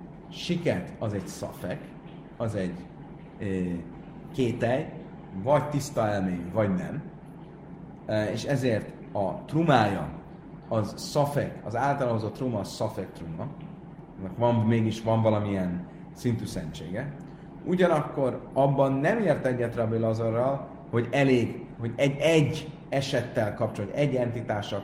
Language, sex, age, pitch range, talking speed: Hungarian, male, 30-49, 105-155 Hz, 110 wpm